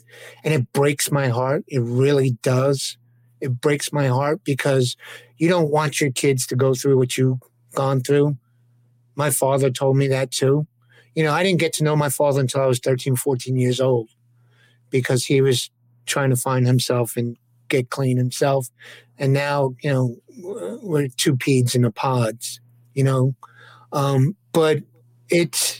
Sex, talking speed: male, 170 wpm